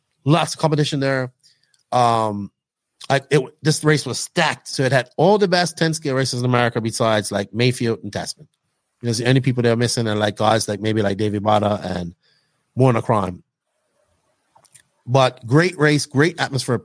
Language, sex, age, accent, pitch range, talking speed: English, male, 30-49, American, 115-145 Hz, 175 wpm